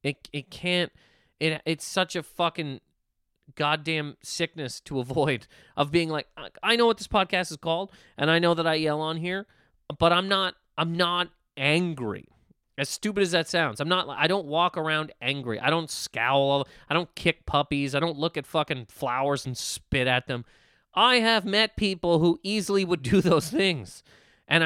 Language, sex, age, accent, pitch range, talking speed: English, male, 30-49, American, 130-175 Hz, 185 wpm